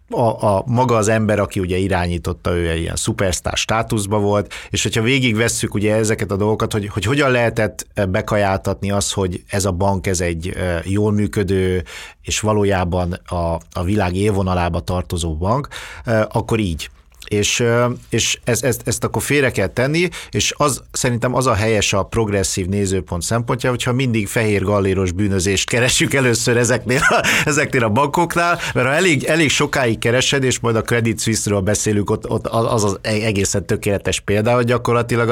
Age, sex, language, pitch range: 50-69, male, Hungarian, 100-120 Hz